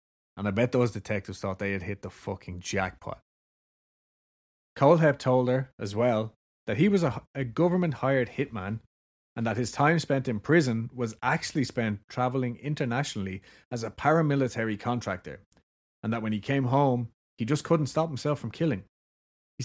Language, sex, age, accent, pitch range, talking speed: English, male, 30-49, Irish, 100-130 Hz, 165 wpm